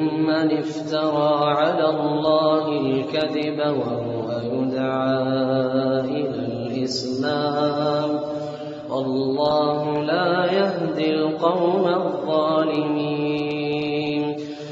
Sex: male